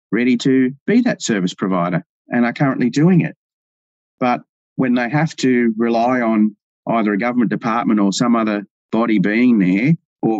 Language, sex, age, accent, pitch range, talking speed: English, male, 30-49, Australian, 100-130 Hz, 165 wpm